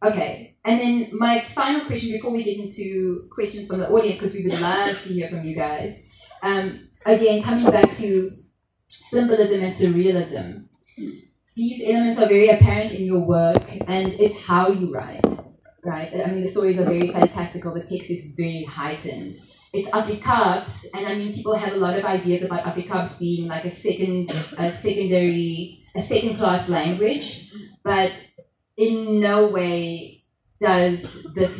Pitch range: 175-215 Hz